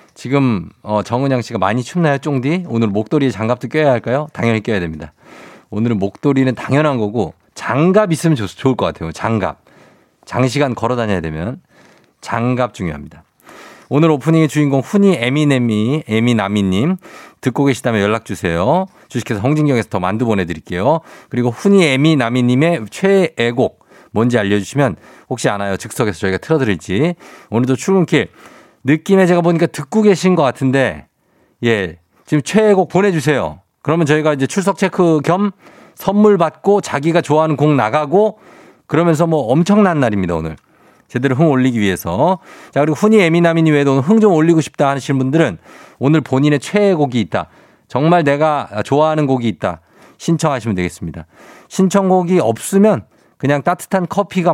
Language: Korean